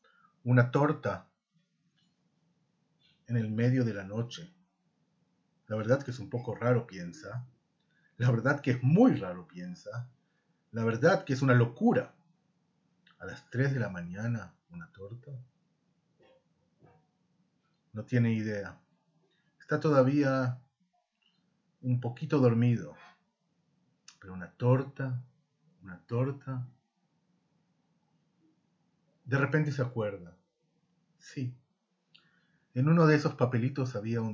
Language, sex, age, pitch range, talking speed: Spanish, male, 40-59, 120-175 Hz, 110 wpm